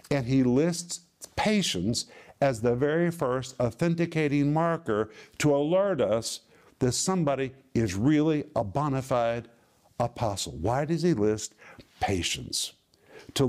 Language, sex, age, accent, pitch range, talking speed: English, male, 50-69, American, 125-165 Hz, 120 wpm